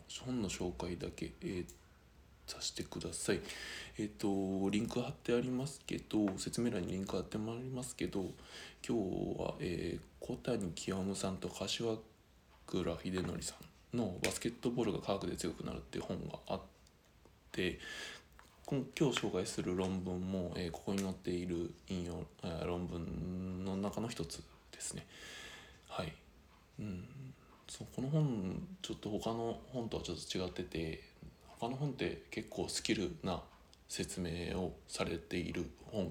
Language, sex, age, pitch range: Japanese, male, 20-39, 90-120 Hz